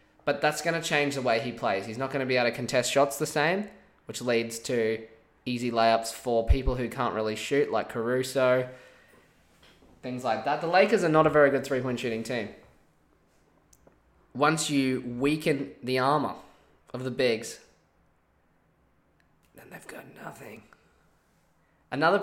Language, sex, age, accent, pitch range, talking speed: English, male, 20-39, Australian, 120-145 Hz, 160 wpm